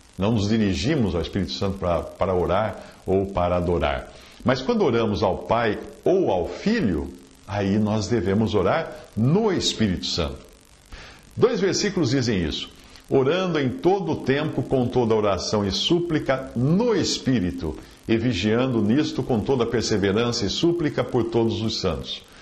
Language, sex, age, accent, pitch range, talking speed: Portuguese, male, 60-79, Brazilian, 100-140 Hz, 145 wpm